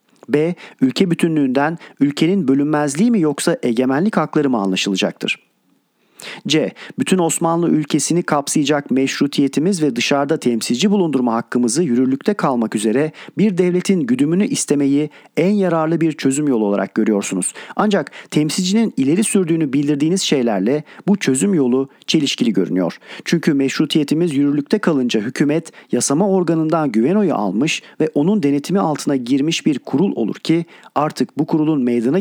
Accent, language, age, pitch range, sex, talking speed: native, Turkish, 40-59, 135-175 Hz, male, 130 wpm